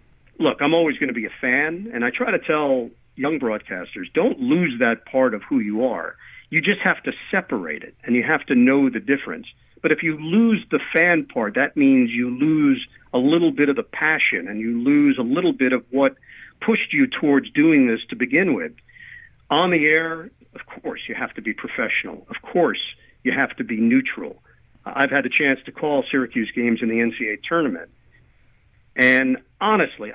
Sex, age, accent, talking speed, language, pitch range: male, 50-69, American, 200 wpm, English, 130-170 Hz